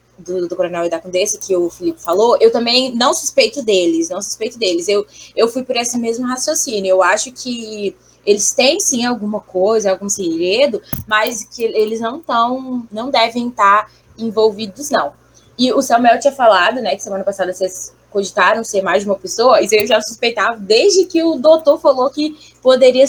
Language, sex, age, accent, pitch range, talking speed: Portuguese, female, 10-29, Brazilian, 200-260 Hz, 185 wpm